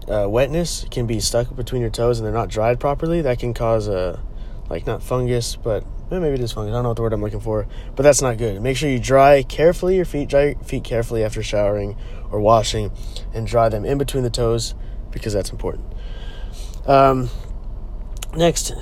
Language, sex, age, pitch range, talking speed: English, male, 20-39, 110-140 Hz, 205 wpm